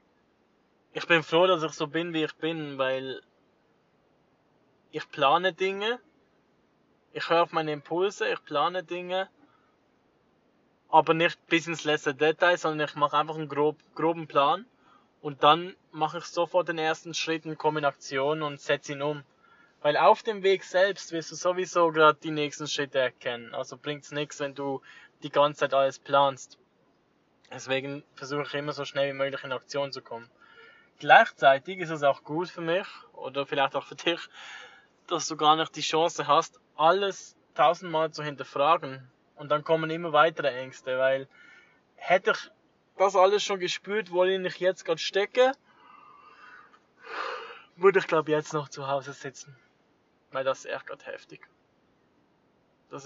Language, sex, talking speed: German, male, 160 wpm